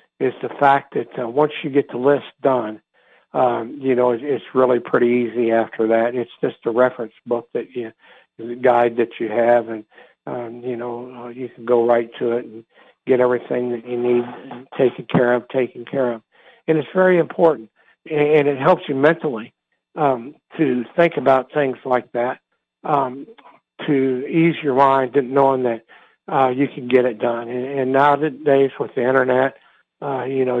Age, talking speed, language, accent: 60-79, 180 wpm, English, American